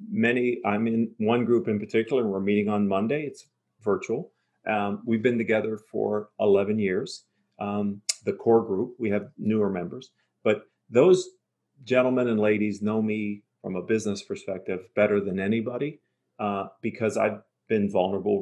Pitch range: 100-125 Hz